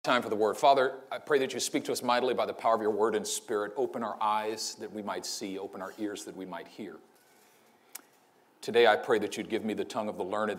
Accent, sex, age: American, male, 40-59